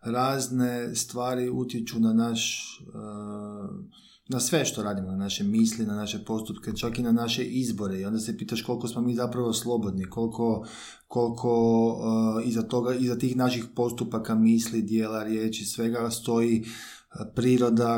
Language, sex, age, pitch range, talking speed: Croatian, male, 20-39, 110-125 Hz, 145 wpm